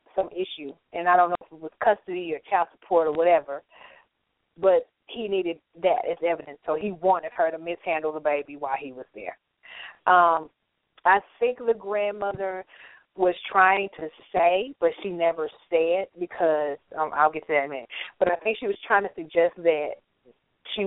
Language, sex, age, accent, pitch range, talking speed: English, female, 30-49, American, 160-200 Hz, 185 wpm